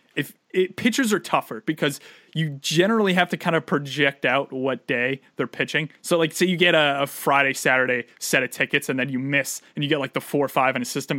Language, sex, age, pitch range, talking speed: English, male, 30-49, 140-175 Hz, 240 wpm